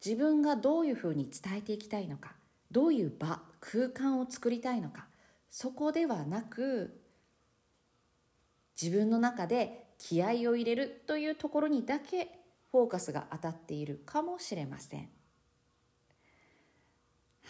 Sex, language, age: female, Japanese, 40-59